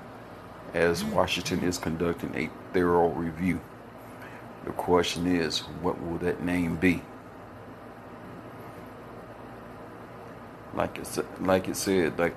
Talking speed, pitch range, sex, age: 95 wpm, 90-110 Hz, male, 50-69